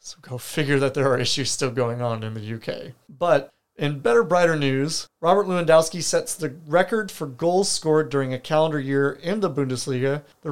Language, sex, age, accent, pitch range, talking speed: English, male, 30-49, American, 130-165 Hz, 195 wpm